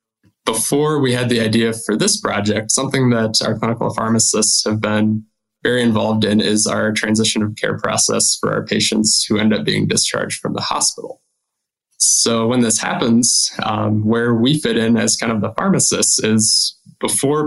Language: English